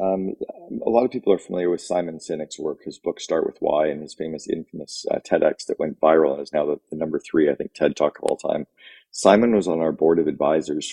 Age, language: 40-59, English